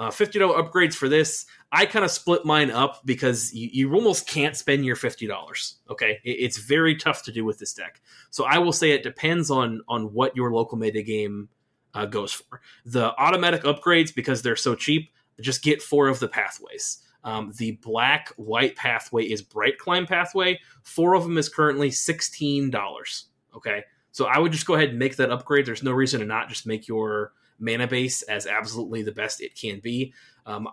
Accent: American